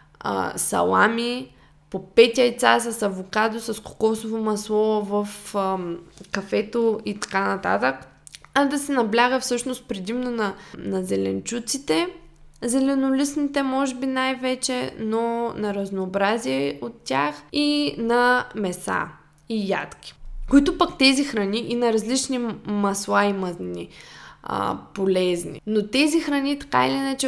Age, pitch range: 20-39, 190-245 Hz